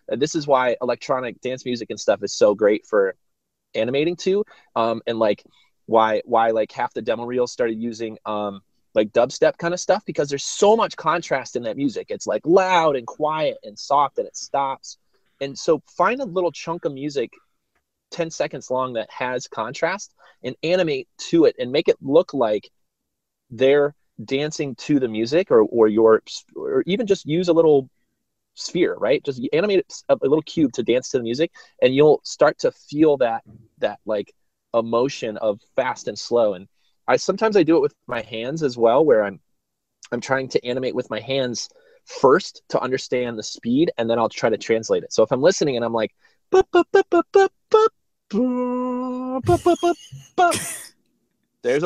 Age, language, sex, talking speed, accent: 30-49, English, male, 175 wpm, American